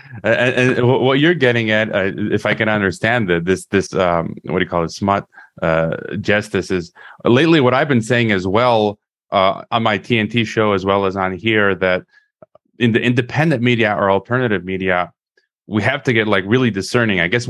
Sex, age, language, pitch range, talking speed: male, 30-49, English, 105-130 Hz, 200 wpm